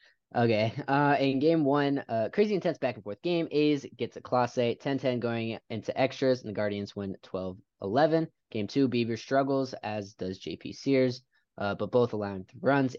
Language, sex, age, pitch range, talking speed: English, male, 20-39, 100-130 Hz, 185 wpm